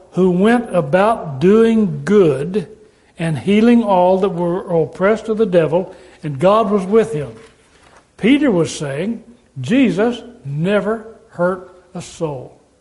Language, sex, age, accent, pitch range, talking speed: English, male, 60-79, American, 155-210 Hz, 125 wpm